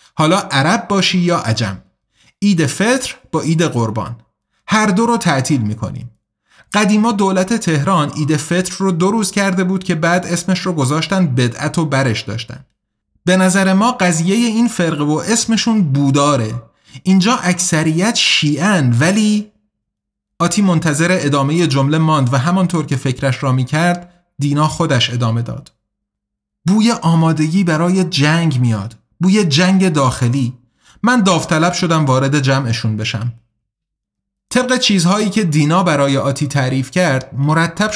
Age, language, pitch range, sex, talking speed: 30-49, Persian, 130-185 Hz, male, 135 wpm